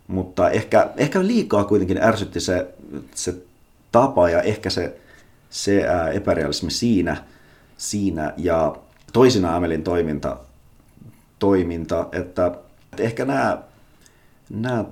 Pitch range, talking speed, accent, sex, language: 80-105 Hz, 95 wpm, native, male, Finnish